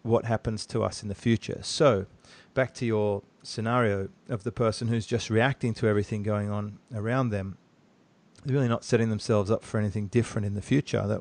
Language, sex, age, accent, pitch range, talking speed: English, male, 40-59, Australian, 110-125 Hz, 200 wpm